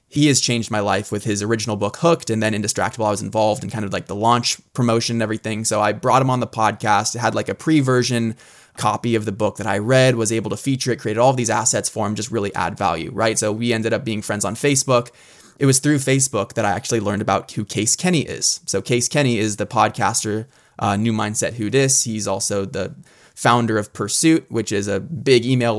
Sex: male